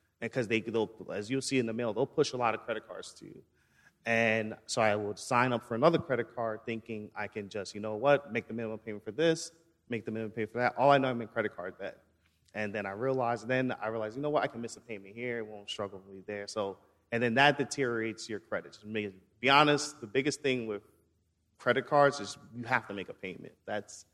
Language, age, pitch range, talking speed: English, 30-49, 105-120 Hz, 255 wpm